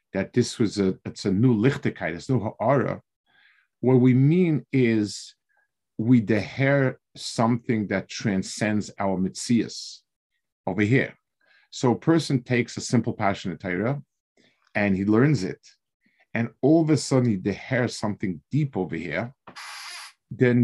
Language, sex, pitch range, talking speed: English, male, 105-135 Hz, 140 wpm